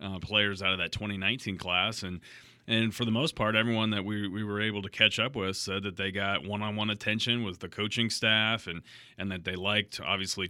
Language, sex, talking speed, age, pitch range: English, male, 225 wpm, 30-49, 95-105 Hz